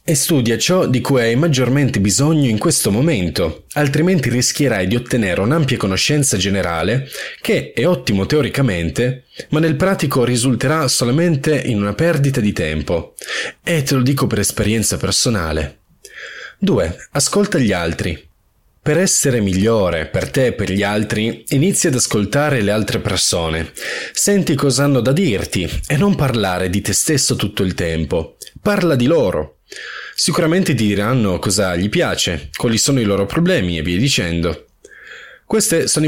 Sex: male